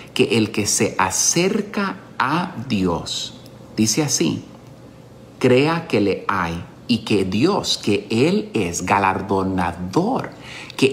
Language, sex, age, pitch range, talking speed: Spanish, male, 50-69, 95-125 Hz, 115 wpm